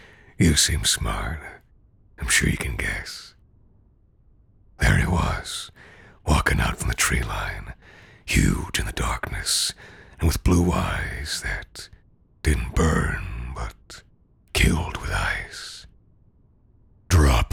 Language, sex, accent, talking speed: English, male, American, 115 wpm